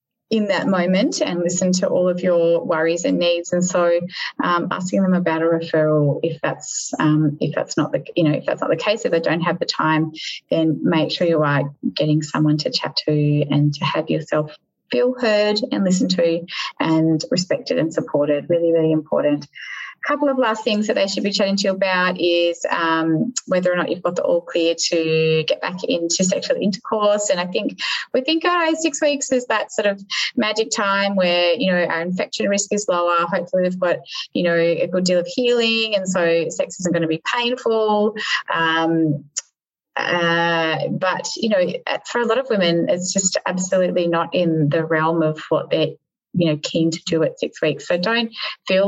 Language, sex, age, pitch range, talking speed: English, female, 20-39, 160-205 Hz, 200 wpm